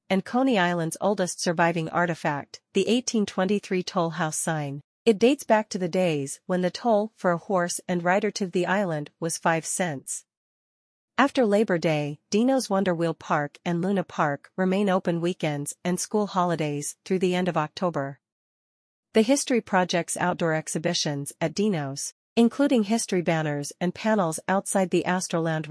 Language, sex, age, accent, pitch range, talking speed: English, female, 40-59, American, 165-200 Hz, 155 wpm